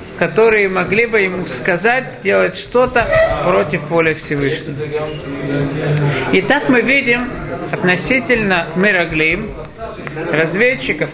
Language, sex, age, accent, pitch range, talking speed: Russian, male, 50-69, native, 160-225 Hz, 85 wpm